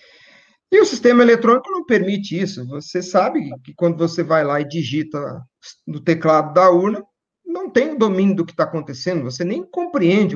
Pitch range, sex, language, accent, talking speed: 170-240 Hz, male, Portuguese, Brazilian, 180 wpm